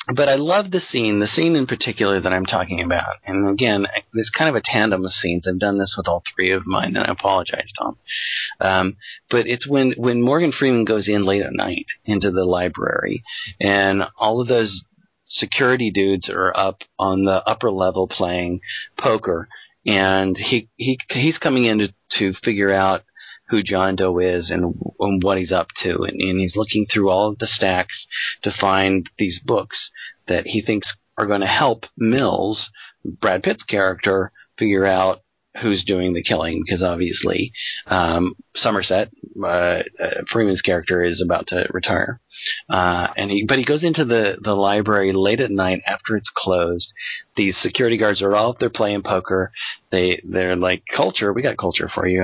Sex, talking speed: male, 185 wpm